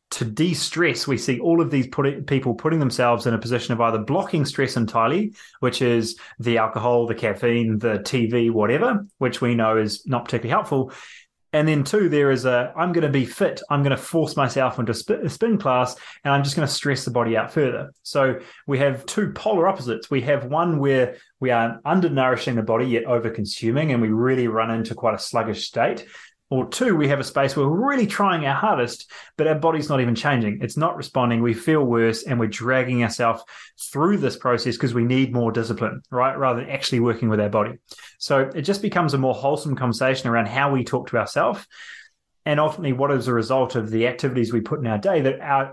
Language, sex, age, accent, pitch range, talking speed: English, male, 20-39, Australian, 115-145 Hz, 220 wpm